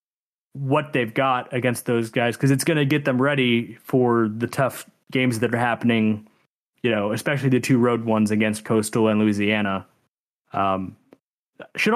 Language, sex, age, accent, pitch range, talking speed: English, male, 20-39, American, 115-140 Hz, 165 wpm